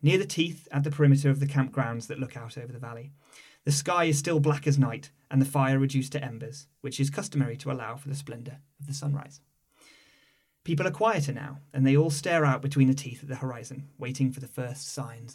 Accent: British